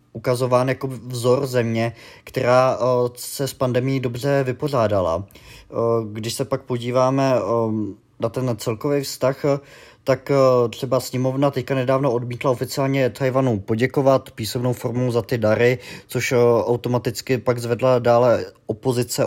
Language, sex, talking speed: Czech, male, 135 wpm